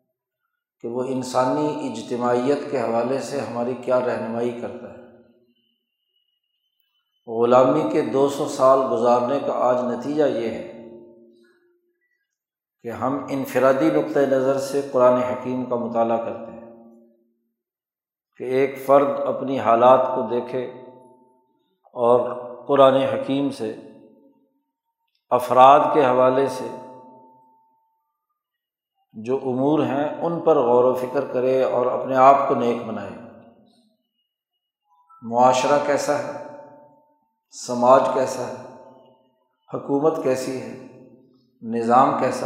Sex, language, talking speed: male, Urdu, 105 wpm